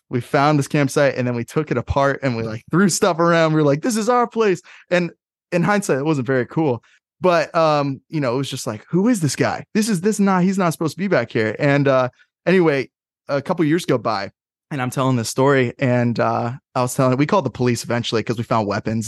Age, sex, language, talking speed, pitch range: 20-39, male, English, 260 wpm, 120-155 Hz